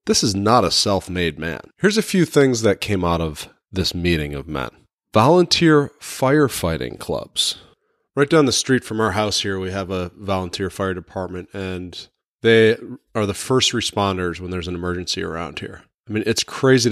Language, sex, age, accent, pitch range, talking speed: English, male, 30-49, American, 95-135 Hz, 180 wpm